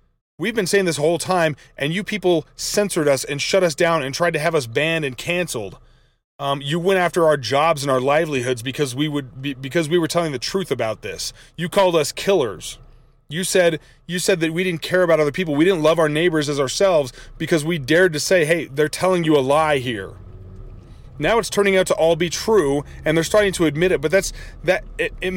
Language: English